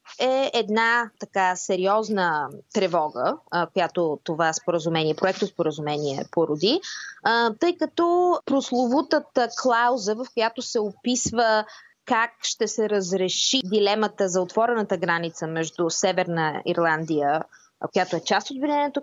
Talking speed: 110 wpm